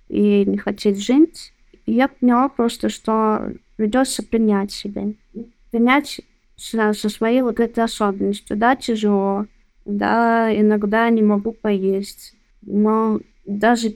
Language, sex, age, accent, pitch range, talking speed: Russian, female, 20-39, native, 205-235 Hz, 110 wpm